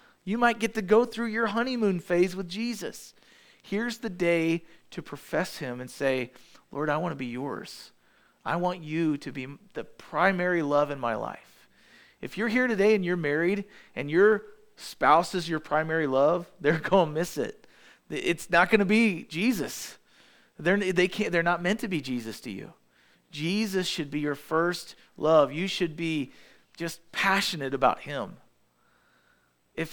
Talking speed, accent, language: 170 wpm, American, English